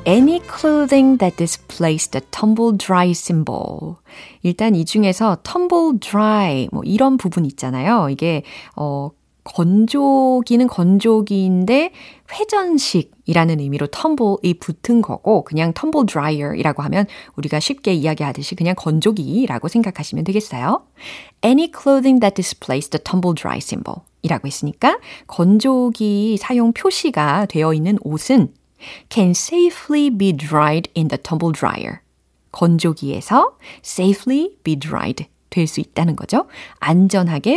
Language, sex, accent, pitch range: Korean, female, native, 160-250 Hz